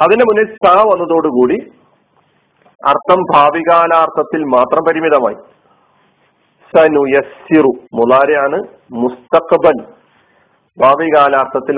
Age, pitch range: 50-69, 125-165 Hz